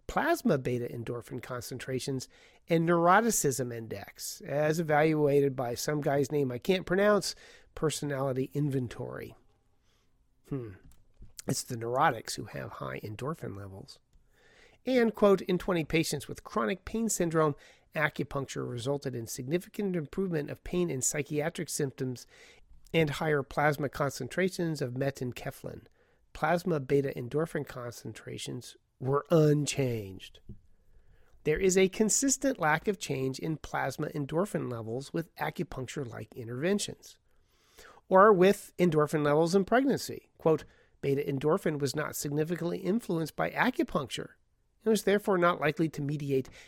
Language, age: English, 40-59